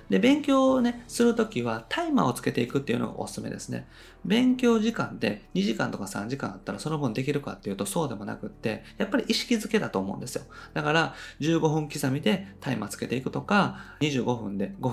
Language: Japanese